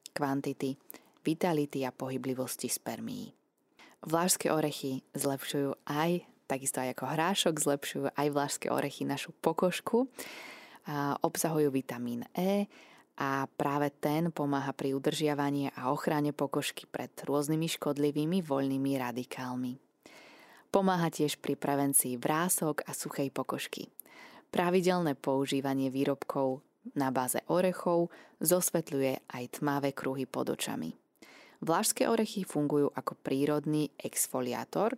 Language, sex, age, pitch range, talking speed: Slovak, female, 20-39, 140-175 Hz, 110 wpm